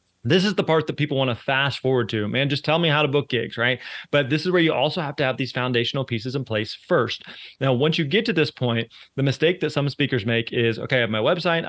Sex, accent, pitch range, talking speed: male, American, 115-140 Hz, 270 wpm